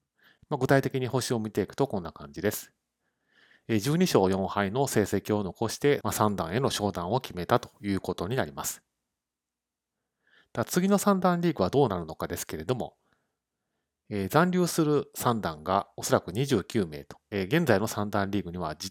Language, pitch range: Japanese, 95-130 Hz